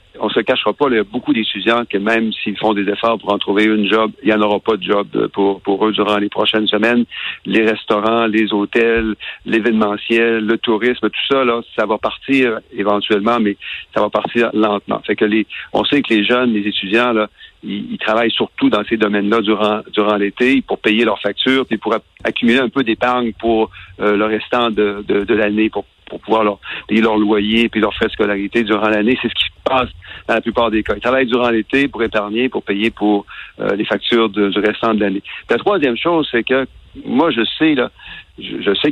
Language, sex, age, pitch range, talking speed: French, male, 50-69, 105-120 Hz, 220 wpm